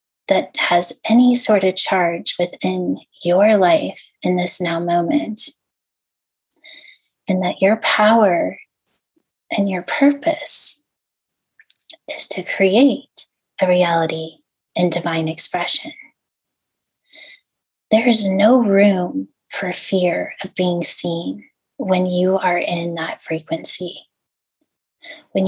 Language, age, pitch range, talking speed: English, 20-39, 180-225 Hz, 105 wpm